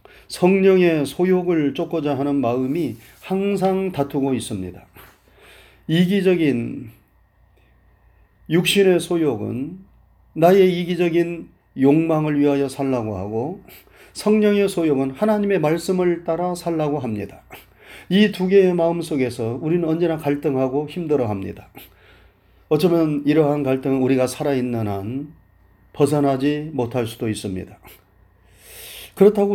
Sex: male